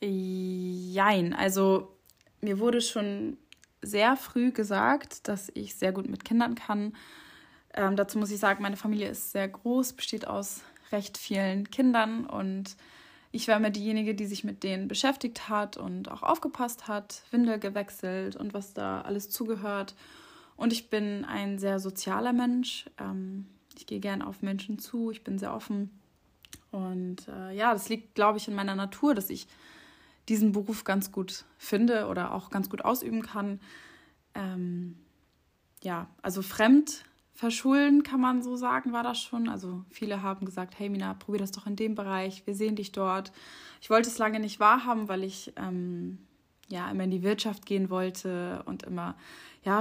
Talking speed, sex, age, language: 170 wpm, female, 20-39, German